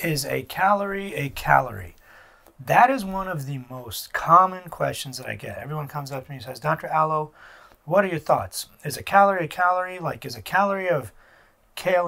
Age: 30-49